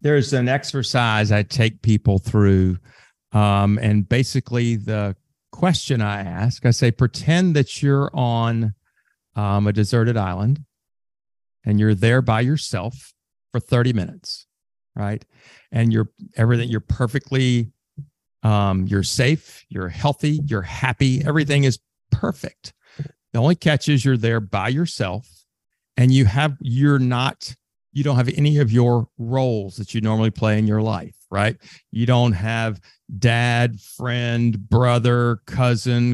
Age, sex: 50-69, male